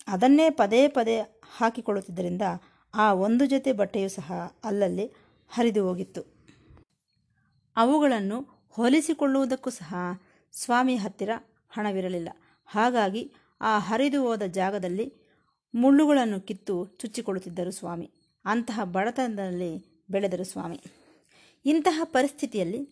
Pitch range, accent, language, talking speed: 190-240 Hz, native, Kannada, 85 wpm